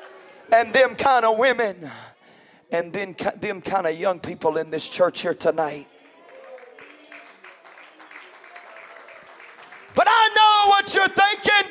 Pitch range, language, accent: 190-275 Hz, English, American